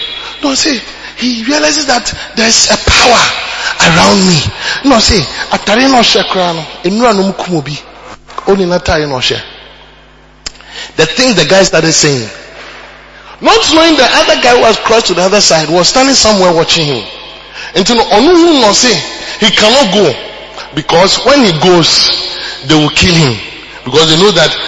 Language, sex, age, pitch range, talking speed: English, male, 30-49, 180-290 Hz, 125 wpm